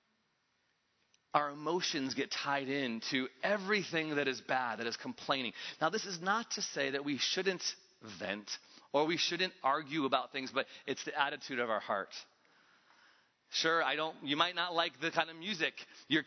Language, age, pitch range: English, 30-49, 140-185 Hz